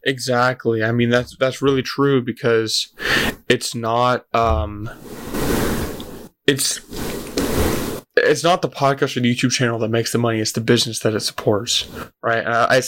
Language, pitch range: English, 110-135 Hz